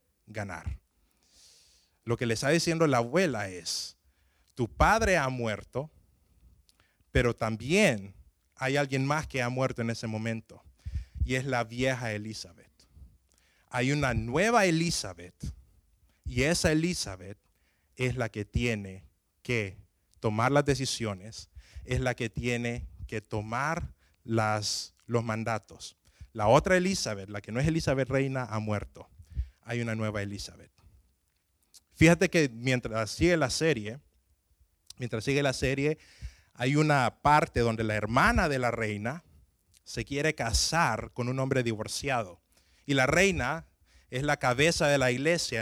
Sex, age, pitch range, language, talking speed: male, 30-49, 90-135 Hz, Spanish, 135 wpm